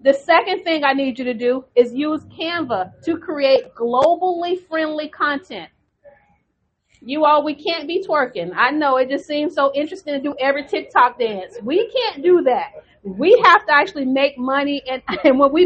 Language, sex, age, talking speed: English, female, 40-59, 185 wpm